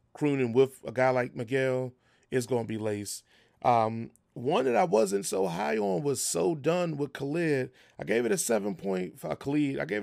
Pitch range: 115-145 Hz